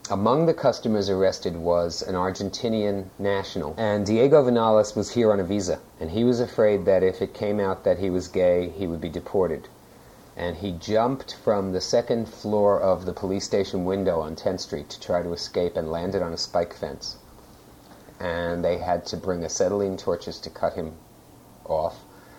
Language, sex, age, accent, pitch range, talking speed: English, male, 40-59, American, 90-110 Hz, 185 wpm